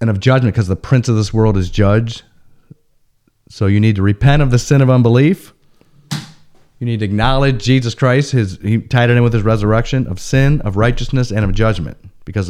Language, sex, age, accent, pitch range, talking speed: English, male, 30-49, American, 110-150 Hz, 205 wpm